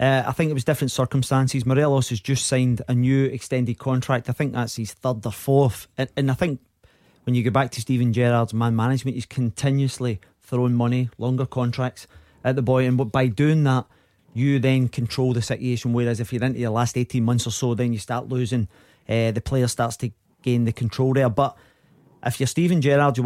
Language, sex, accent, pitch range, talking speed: English, male, British, 120-135 Hz, 210 wpm